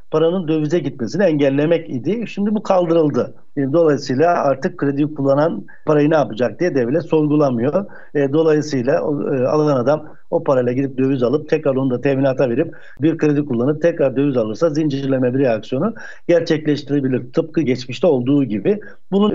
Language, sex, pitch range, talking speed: Turkish, male, 140-175 Hz, 145 wpm